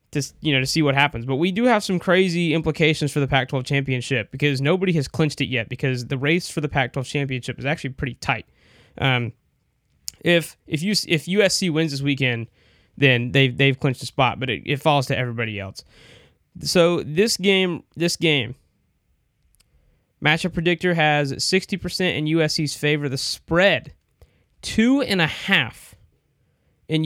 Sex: male